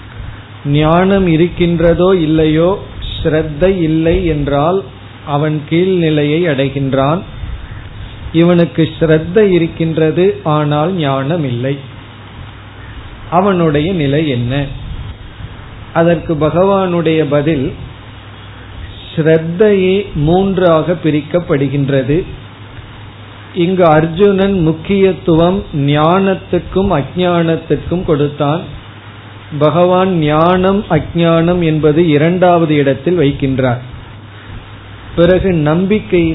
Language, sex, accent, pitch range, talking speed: Tamil, male, native, 125-175 Hz, 60 wpm